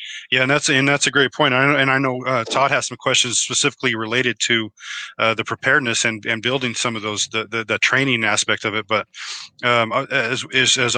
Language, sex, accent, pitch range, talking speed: English, male, American, 115-135 Hz, 220 wpm